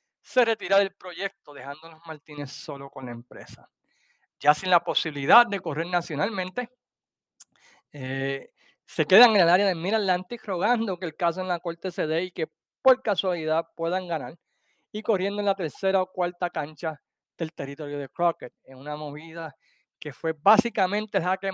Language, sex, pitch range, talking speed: Spanish, male, 150-195 Hz, 165 wpm